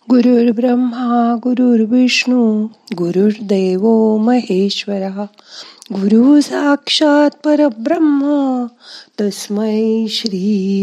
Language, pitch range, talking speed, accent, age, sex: Marathi, 195-255 Hz, 60 wpm, native, 50-69, female